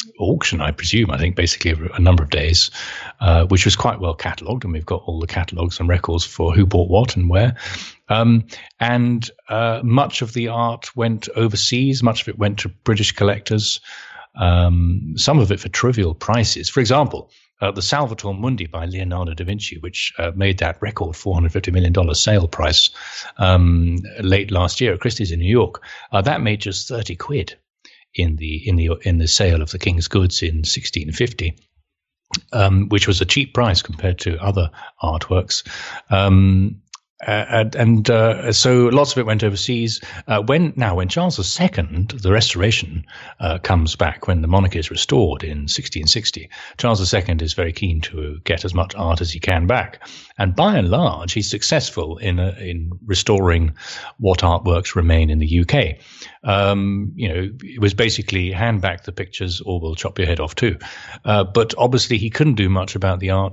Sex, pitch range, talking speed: male, 85-110 Hz, 185 wpm